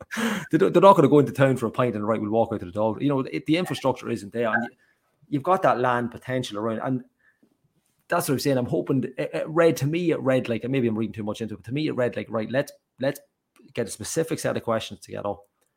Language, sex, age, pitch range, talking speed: English, male, 30-49, 105-125 Hz, 265 wpm